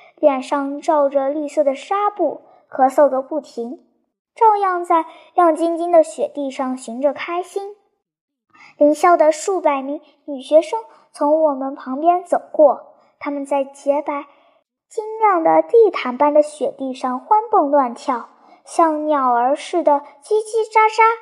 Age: 10-29